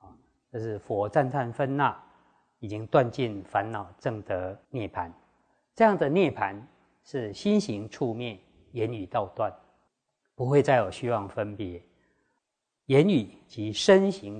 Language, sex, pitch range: Chinese, male, 105-140 Hz